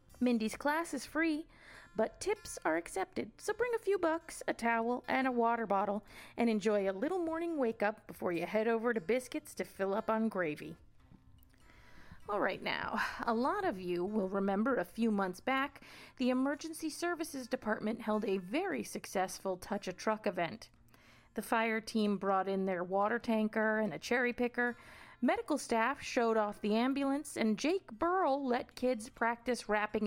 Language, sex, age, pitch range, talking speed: English, female, 30-49, 205-275 Hz, 170 wpm